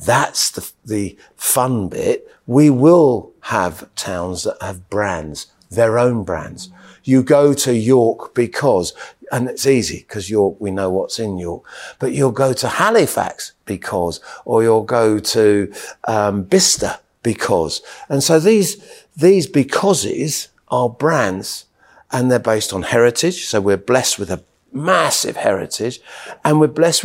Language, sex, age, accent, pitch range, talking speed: English, male, 50-69, British, 100-145 Hz, 145 wpm